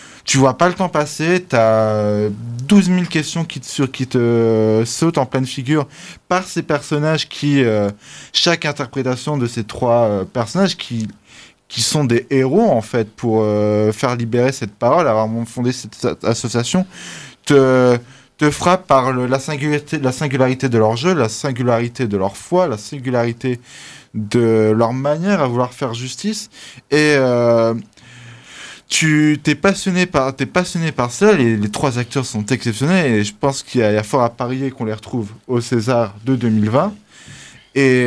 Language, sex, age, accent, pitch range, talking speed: French, male, 20-39, French, 115-150 Hz, 170 wpm